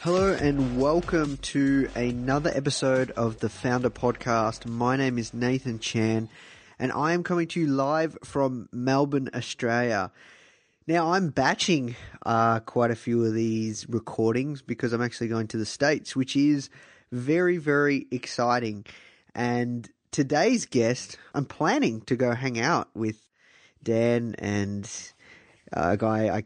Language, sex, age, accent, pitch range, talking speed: English, male, 20-39, Australian, 115-140 Hz, 140 wpm